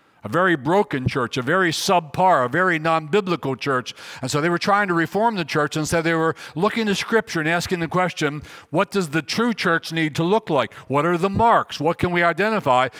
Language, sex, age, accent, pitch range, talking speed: English, male, 60-79, American, 135-180 Hz, 225 wpm